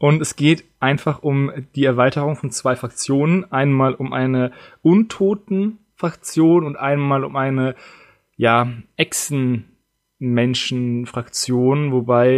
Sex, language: male, German